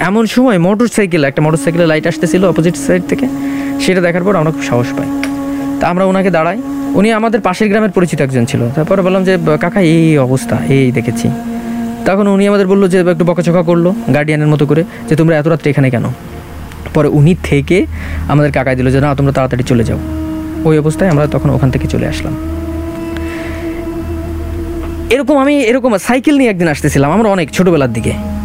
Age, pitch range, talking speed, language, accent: 20-39, 120-195 Hz, 135 wpm, English, Indian